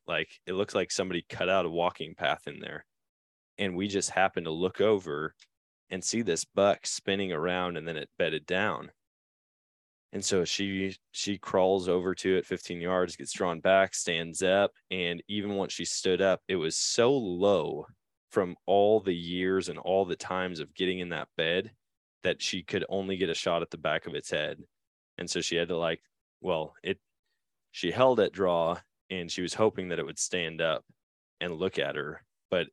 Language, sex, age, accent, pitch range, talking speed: English, male, 20-39, American, 90-105 Hz, 195 wpm